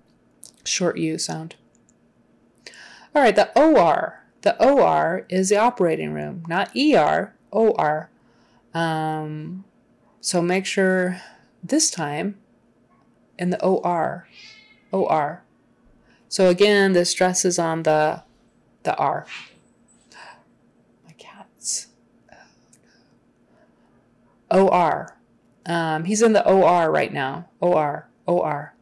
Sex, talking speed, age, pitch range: female, 100 wpm, 30-49, 160-185 Hz